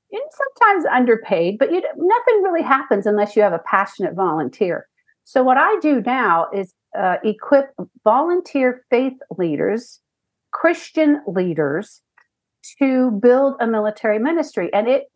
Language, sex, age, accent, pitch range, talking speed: English, female, 50-69, American, 185-265 Hz, 135 wpm